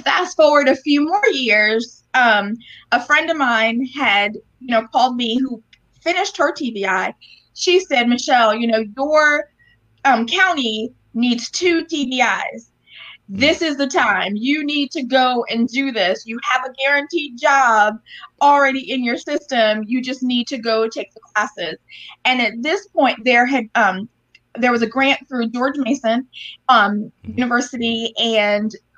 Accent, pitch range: American, 220-275 Hz